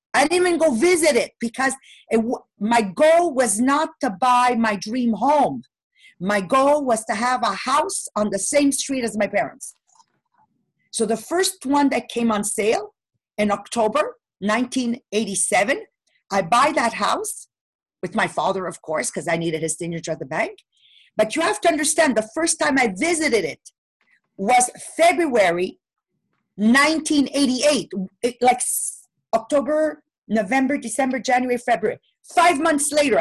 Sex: female